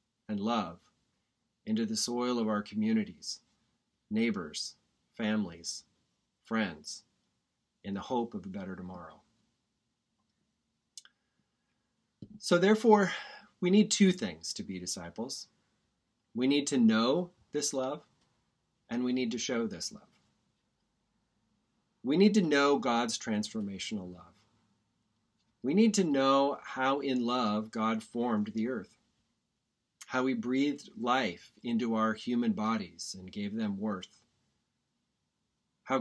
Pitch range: 110-160 Hz